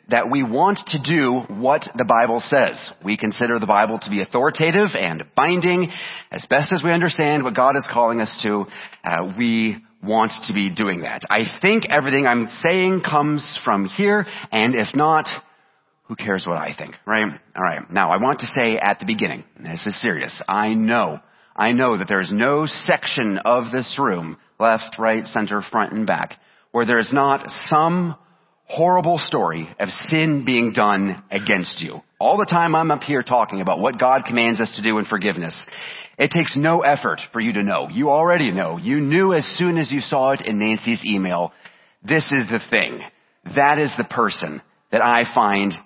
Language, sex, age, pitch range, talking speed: English, male, 30-49, 110-150 Hz, 190 wpm